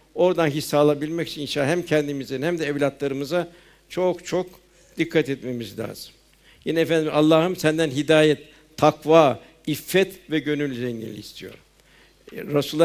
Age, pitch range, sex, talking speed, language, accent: 60-79, 140-160 Hz, male, 125 wpm, Turkish, native